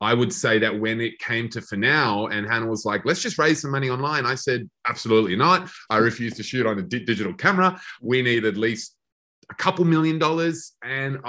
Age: 30-49